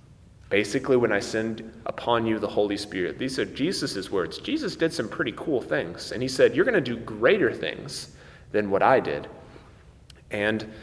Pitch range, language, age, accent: 105-140 Hz, English, 30-49, American